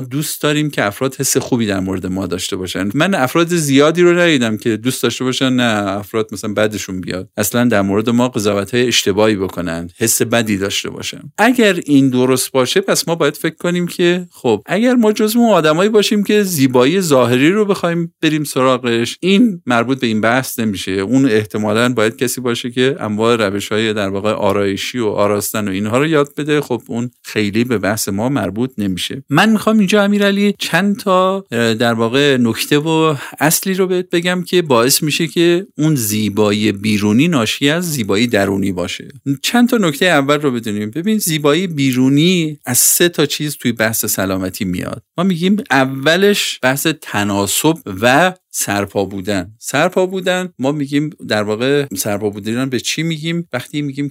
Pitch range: 105-160 Hz